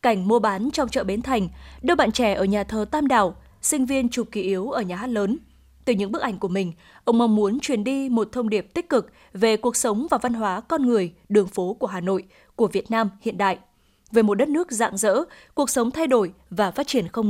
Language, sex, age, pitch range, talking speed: Vietnamese, female, 20-39, 205-250 Hz, 250 wpm